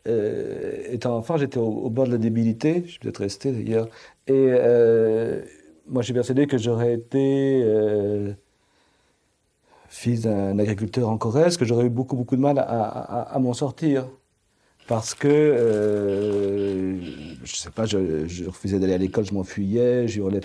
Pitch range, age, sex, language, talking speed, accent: 105-135 Hz, 50-69, male, French, 170 wpm, French